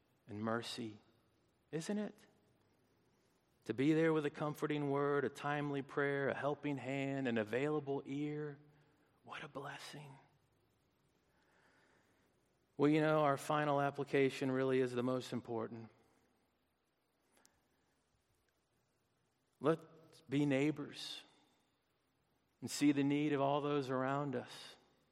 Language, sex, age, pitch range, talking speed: English, male, 50-69, 130-155 Hz, 110 wpm